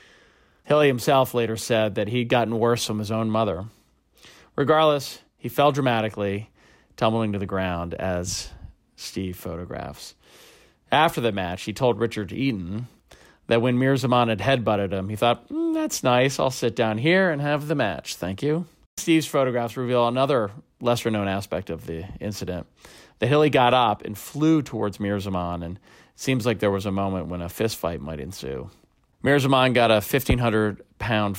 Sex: male